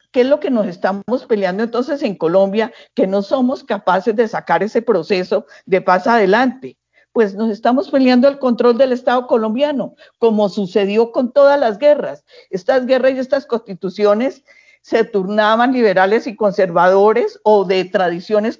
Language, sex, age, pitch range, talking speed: Spanish, female, 50-69, 195-240 Hz, 160 wpm